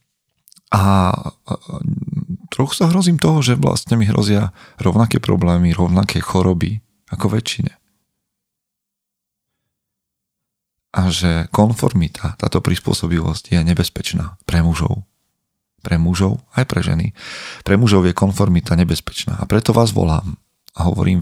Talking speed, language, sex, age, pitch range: 115 wpm, Slovak, male, 40-59, 90-115 Hz